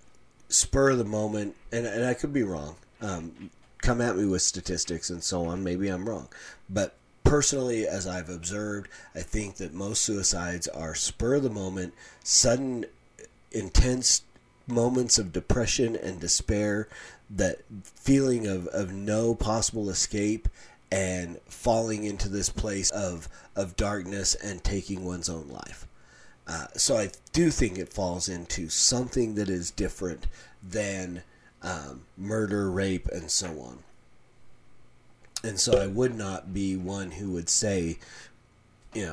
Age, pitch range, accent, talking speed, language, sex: 30-49, 90-115 Hz, American, 145 wpm, English, male